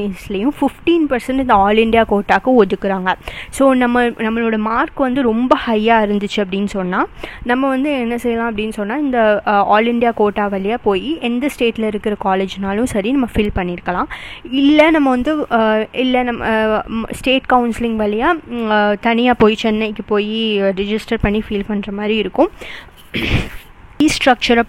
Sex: female